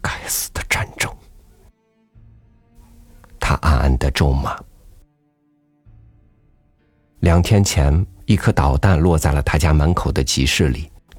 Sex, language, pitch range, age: male, Chinese, 75-100 Hz, 50-69